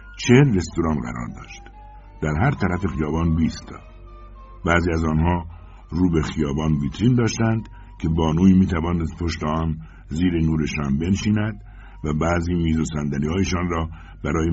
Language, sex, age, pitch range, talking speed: Persian, male, 60-79, 80-105 Hz, 140 wpm